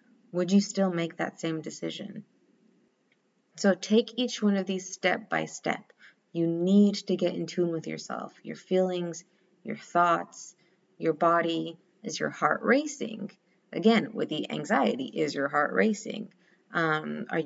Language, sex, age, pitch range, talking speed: English, female, 30-49, 170-215 Hz, 150 wpm